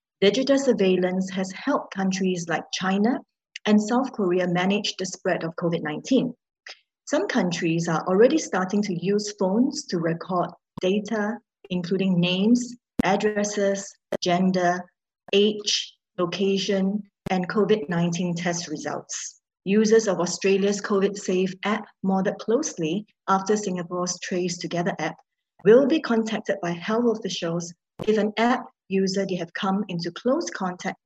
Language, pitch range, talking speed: English, 180-220 Hz, 125 wpm